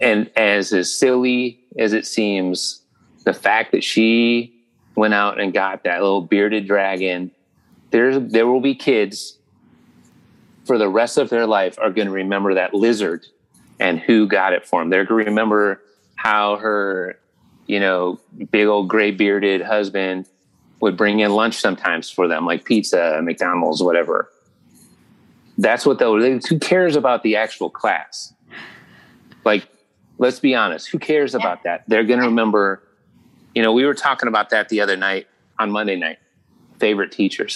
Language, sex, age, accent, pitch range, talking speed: English, male, 30-49, American, 100-115 Hz, 165 wpm